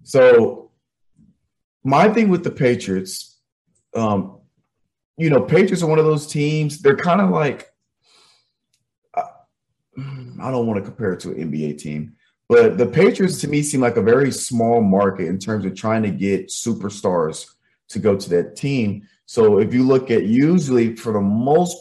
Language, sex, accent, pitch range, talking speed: English, male, American, 105-145 Hz, 170 wpm